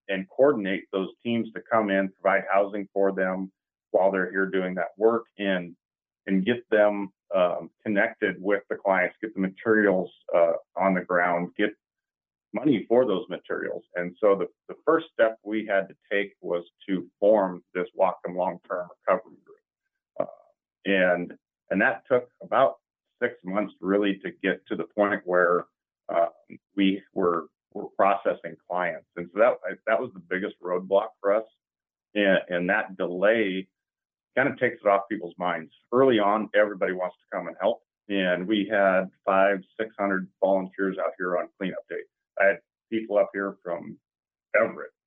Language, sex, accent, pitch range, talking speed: English, male, American, 95-110 Hz, 165 wpm